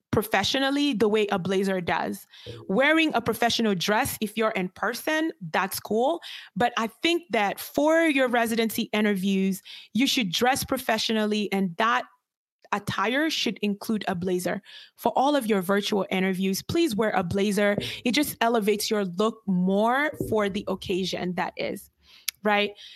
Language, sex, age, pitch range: English, female, 20-39, 195-245 Hz